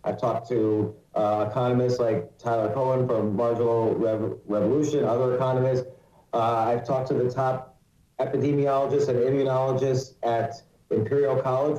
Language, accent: English, American